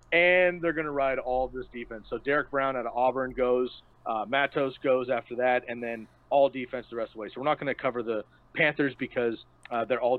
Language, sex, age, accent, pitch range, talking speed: English, male, 30-49, American, 120-145 Hz, 240 wpm